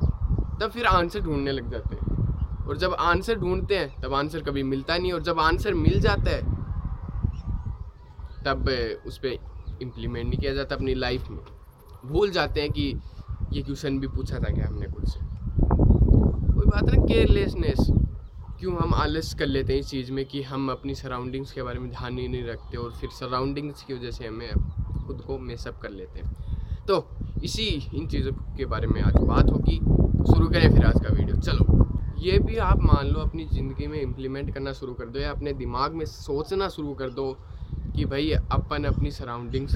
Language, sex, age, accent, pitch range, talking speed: Hindi, male, 20-39, native, 105-155 Hz, 190 wpm